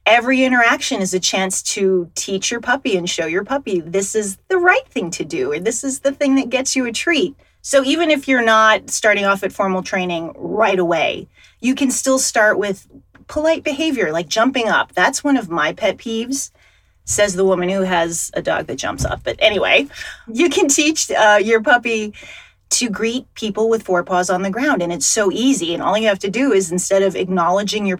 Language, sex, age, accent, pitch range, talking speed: English, female, 30-49, American, 185-260 Hz, 210 wpm